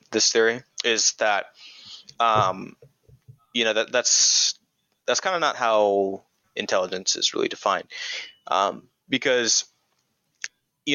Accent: American